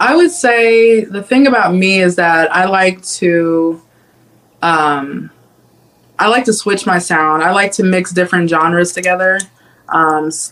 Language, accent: English, American